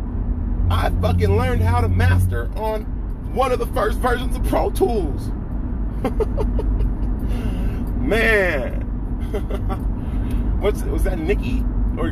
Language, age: English, 30-49